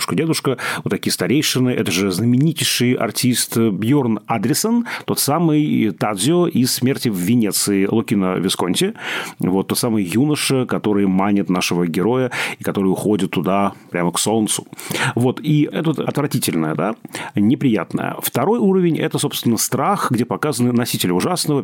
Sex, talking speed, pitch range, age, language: male, 135 wpm, 100-135 Hz, 30-49, Russian